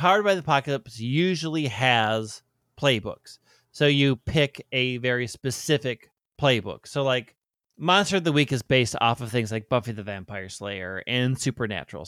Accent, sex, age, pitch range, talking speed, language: American, male, 30-49, 115-150 Hz, 160 wpm, English